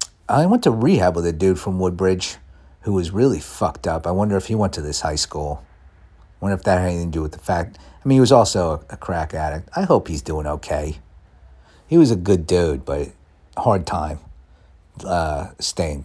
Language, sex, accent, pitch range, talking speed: English, male, American, 75-100 Hz, 215 wpm